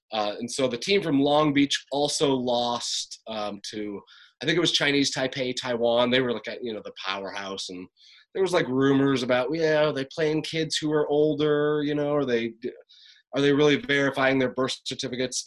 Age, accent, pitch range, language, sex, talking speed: 30-49, American, 105-140 Hz, English, male, 200 wpm